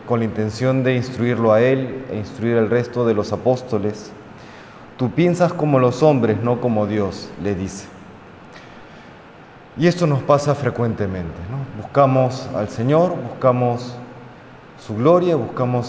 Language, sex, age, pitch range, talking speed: Spanish, male, 30-49, 110-140 Hz, 140 wpm